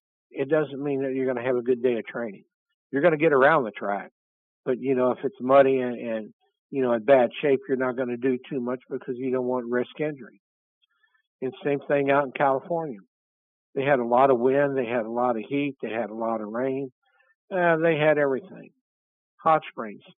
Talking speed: 225 wpm